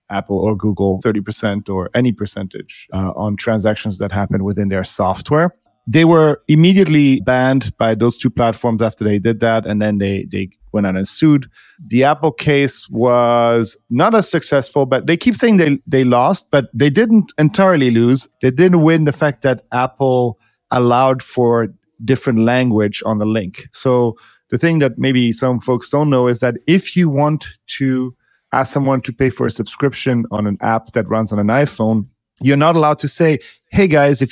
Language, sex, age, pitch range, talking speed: English, male, 40-59, 110-140 Hz, 185 wpm